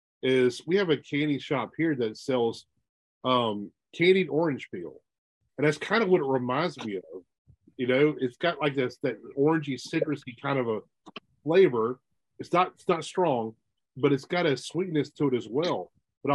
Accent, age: American, 40-59